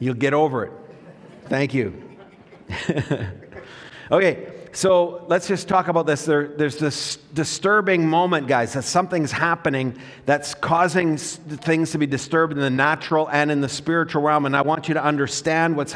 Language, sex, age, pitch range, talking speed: English, male, 50-69, 130-160 Hz, 160 wpm